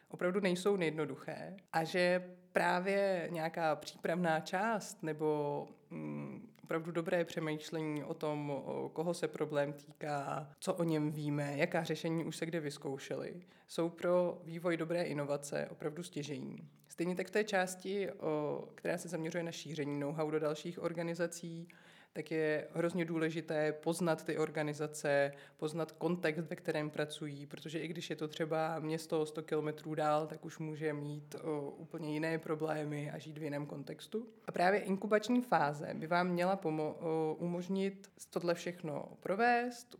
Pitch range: 155-180 Hz